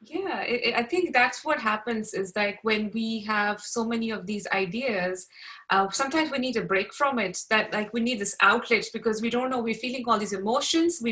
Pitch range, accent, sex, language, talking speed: 220-265 Hz, Indian, female, English, 215 wpm